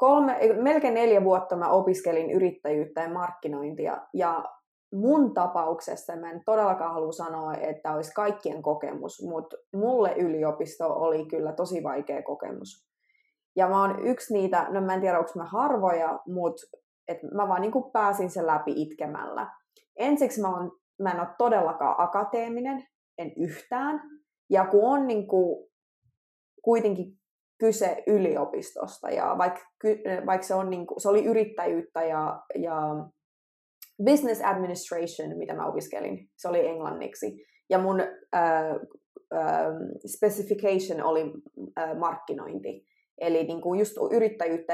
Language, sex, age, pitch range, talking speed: Finnish, female, 20-39, 165-225 Hz, 130 wpm